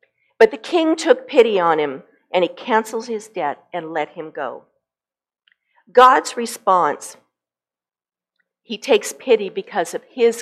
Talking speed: 140 wpm